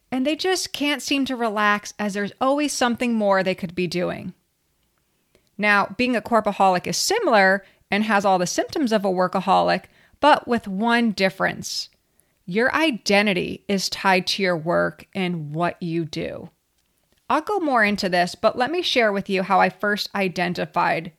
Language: English